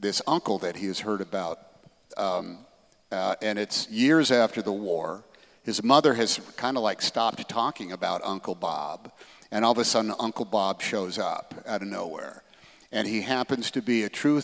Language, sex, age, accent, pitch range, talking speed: English, male, 50-69, American, 105-130 Hz, 185 wpm